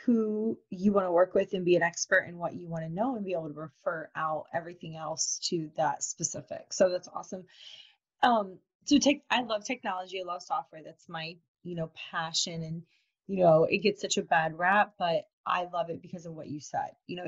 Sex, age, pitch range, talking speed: female, 20-39, 160-200 Hz, 220 wpm